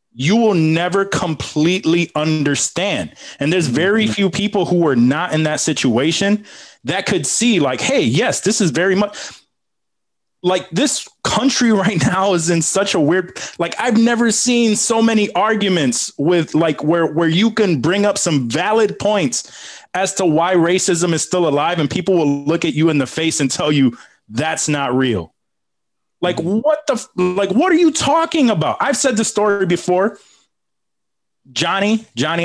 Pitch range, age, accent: 145-205 Hz, 20-39, American